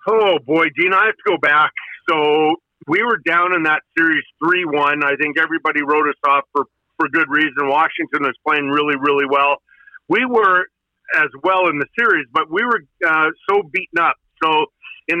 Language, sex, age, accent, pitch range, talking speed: English, male, 50-69, American, 150-190 Hz, 190 wpm